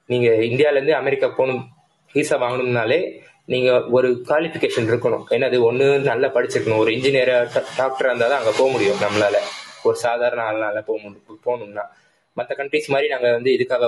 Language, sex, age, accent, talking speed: Tamil, male, 20-39, native, 150 wpm